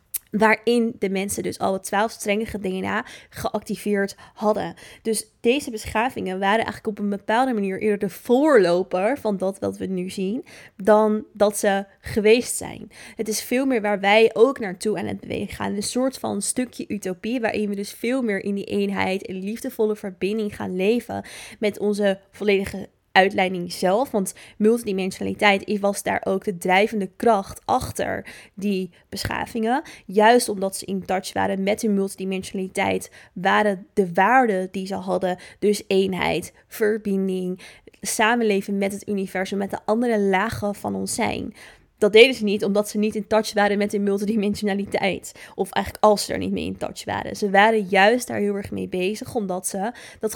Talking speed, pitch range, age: 170 wpm, 195-220 Hz, 20-39